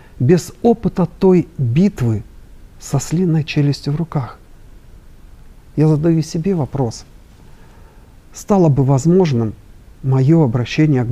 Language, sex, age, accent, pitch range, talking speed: Russian, male, 50-69, native, 115-155 Hz, 105 wpm